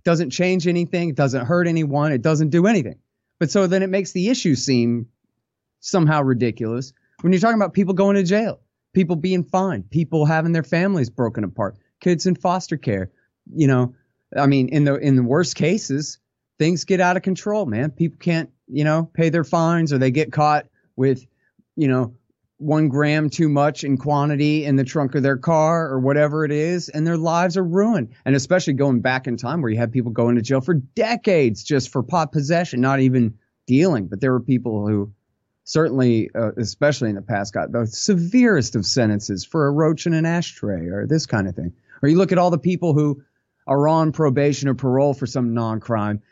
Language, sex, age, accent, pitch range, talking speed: English, male, 30-49, American, 120-165 Hz, 205 wpm